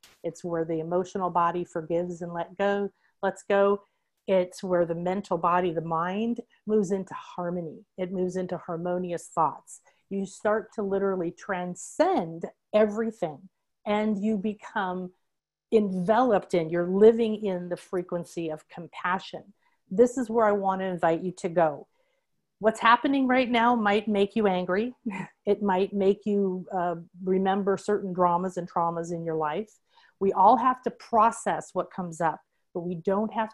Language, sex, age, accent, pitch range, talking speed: English, female, 40-59, American, 180-215 Hz, 155 wpm